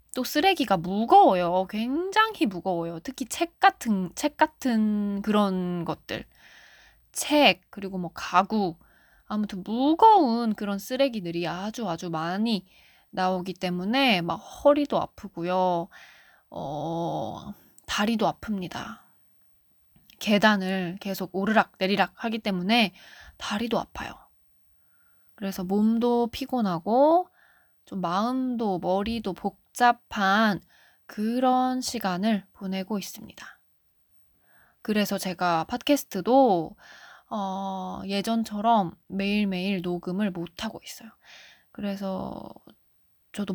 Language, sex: Korean, female